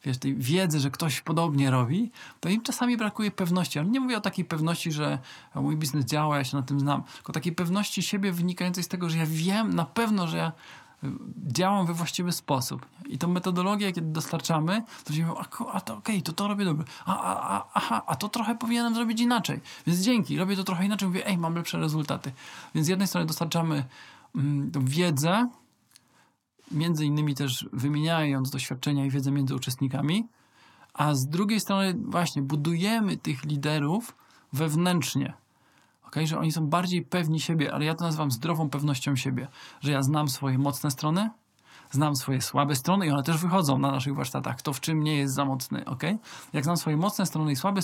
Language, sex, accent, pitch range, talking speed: Polish, male, native, 140-185 Hz, 185 wpm